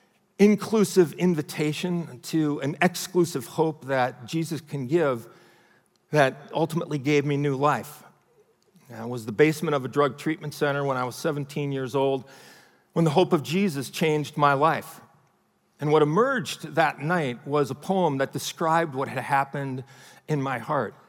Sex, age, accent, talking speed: male, 50-69, American, 155 wpm